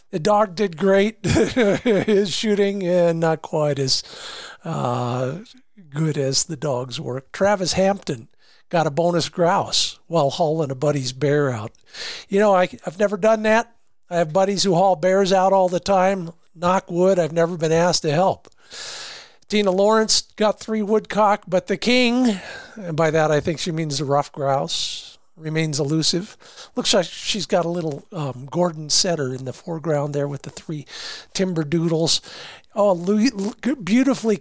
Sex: male